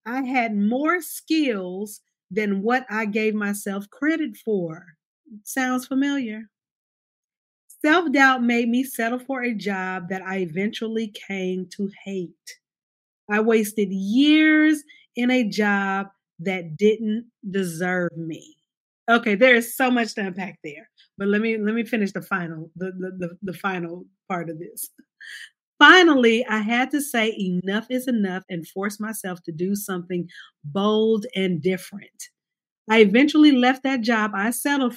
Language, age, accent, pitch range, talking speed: English, 40-59, American, 190-250 Hz, 145 wpm